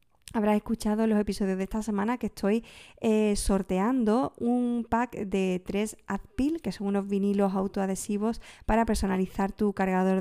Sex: female